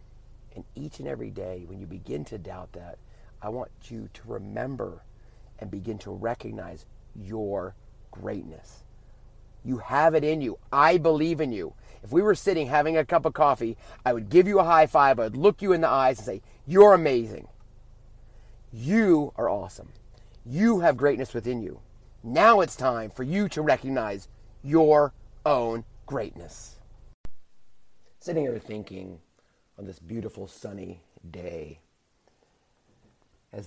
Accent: American